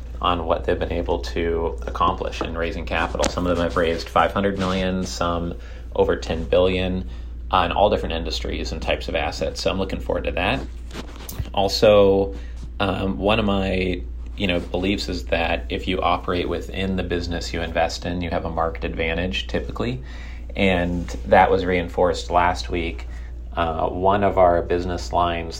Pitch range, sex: 70-90 Hz, male